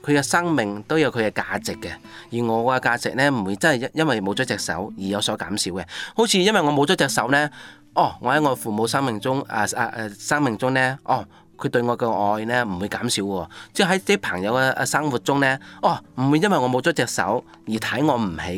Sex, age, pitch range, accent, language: male, 20-39, 105-140 Hz, native, Chinese